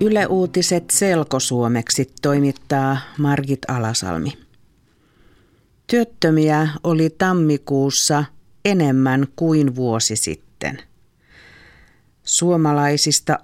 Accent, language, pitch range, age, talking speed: native, Finnish, 125-160 Hz, 50-69, 60 wpm